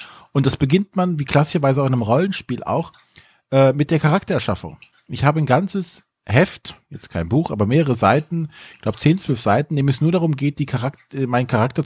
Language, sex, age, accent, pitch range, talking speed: German, male, 40-59, German, 110-150 Hz, 205 wpm